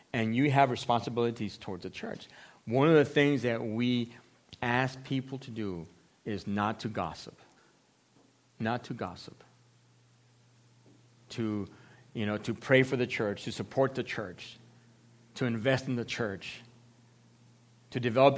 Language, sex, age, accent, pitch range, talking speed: English, male, 40-59, American, 115-145 Hz, 140 wpm